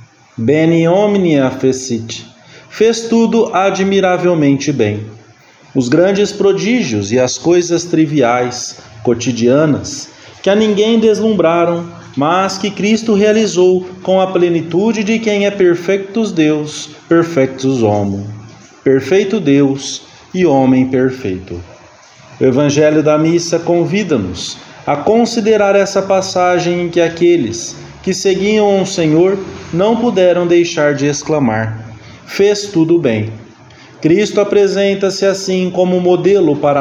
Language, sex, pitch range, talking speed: English, male, 135-195 Hz, 110 wpm